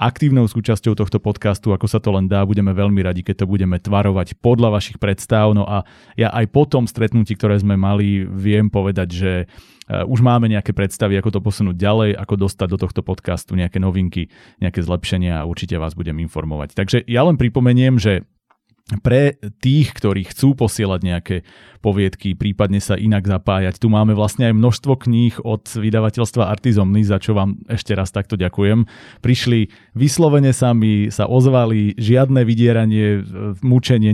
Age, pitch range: 30-49, 95-115 Hz